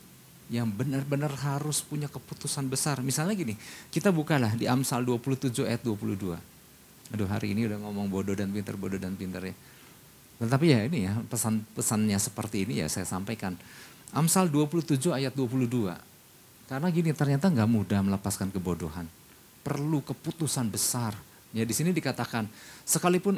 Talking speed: 150 wpm